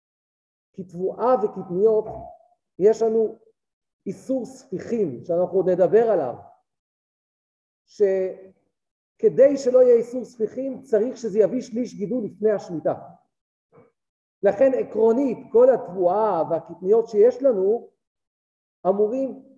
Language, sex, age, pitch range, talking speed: Hebrew, male, 50-69, 185-265 Hz, 90 wpm